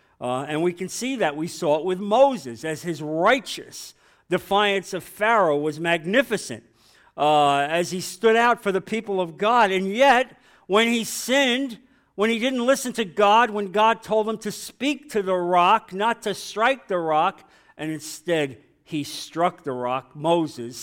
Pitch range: 155-215 Hz